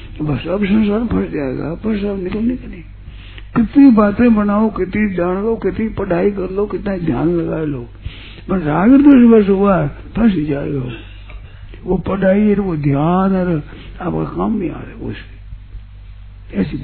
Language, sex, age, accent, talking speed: Hindi, male, 60-79, native, 155 wpm